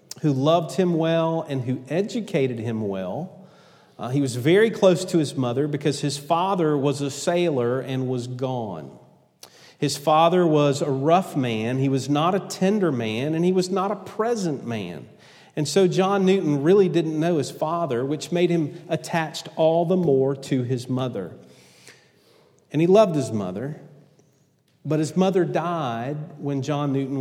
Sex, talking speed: male, 170 wpm